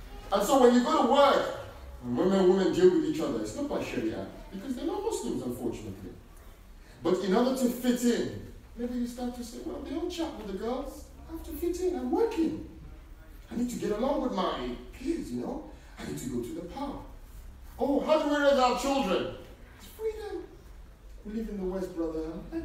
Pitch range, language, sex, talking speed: 180-275 Hz, English, male, 215 wpm